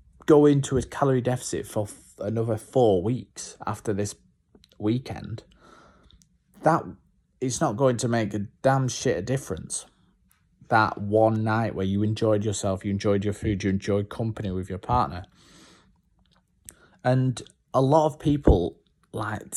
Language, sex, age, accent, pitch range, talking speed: English, male, 20-39, British, 100-135 Hz, 140 wpm